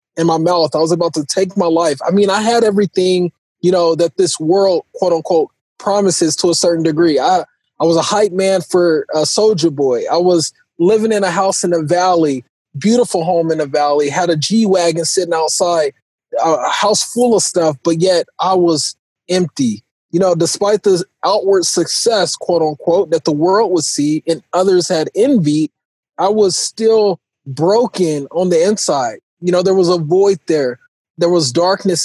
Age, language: 20-39, English